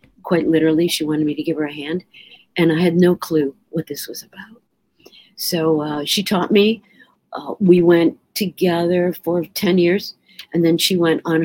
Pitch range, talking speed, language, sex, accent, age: 160-195 Hz, 190 wpm, English, female, American, 50-69